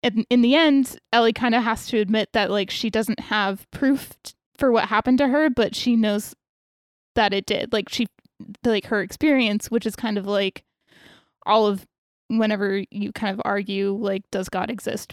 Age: 20-39